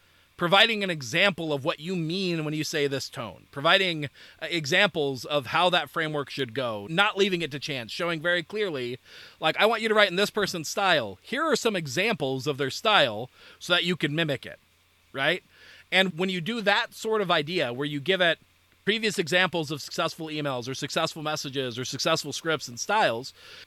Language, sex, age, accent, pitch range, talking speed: English, male, 40-59, American, 140-190 Hz, 195 wpm